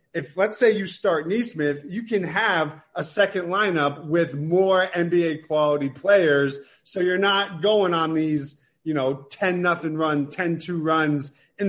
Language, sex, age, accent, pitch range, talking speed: English, male, 30-49, American, 145-185 Hz, 165 wpm